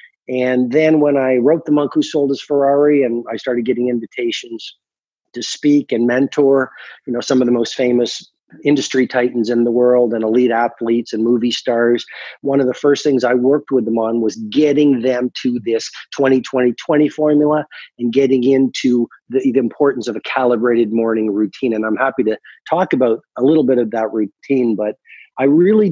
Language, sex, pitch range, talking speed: English, male, 120-140 Hz, 190 wpm